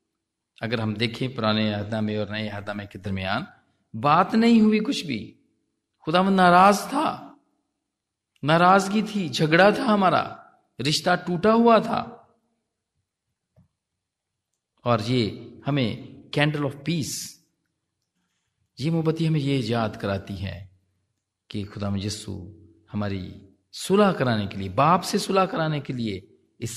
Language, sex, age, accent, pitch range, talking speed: Hindi, male, 40-59, native, 105-175 Hz, 130 wpm